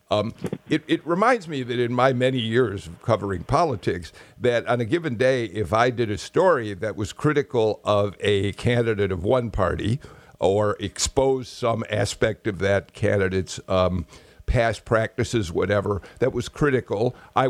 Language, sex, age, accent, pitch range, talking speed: English, male, 60-79, American, 105-140 Hz, 160 wpm